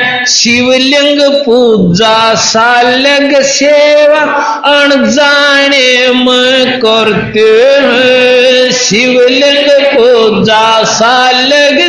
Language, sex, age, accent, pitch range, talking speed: Hindi, male, 50-69, native, 195-270 Hz, 50 wpm